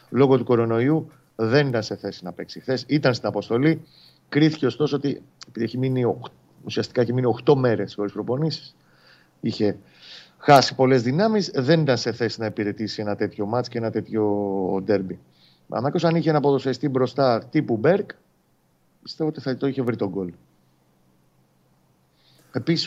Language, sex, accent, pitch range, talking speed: Greek, male, native, 110-145 Hz, 155 wpm